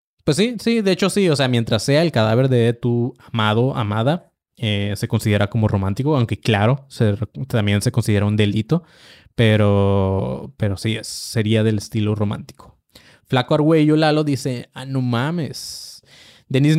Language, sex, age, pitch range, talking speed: Spanish, male, 20-39, 110-150 Hz, 160 wpm